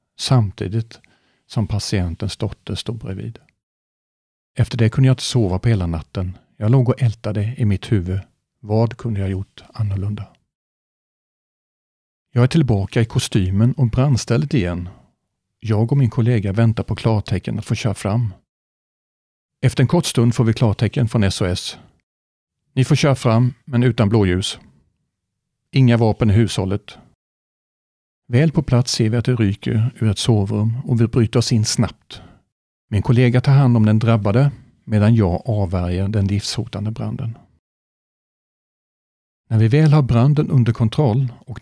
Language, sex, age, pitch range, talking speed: Swedish, male, 40-59, 100-125 Hz, 150 wpm